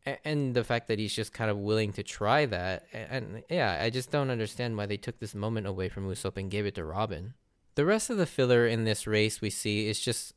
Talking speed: 255 wpm